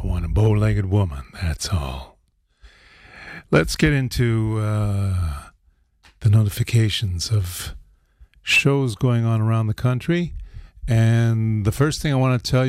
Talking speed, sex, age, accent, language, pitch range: 130 wpm, male, 50-69, American, English, 95-115 Hz